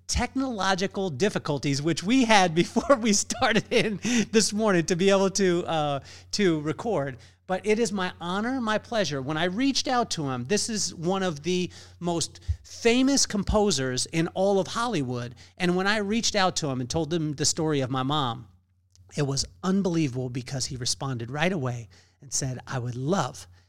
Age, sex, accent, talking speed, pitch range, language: 40-59, male, American, 180 wpm, 130-185 Hz, English